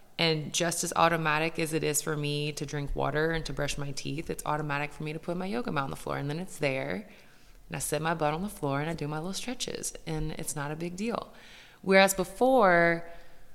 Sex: female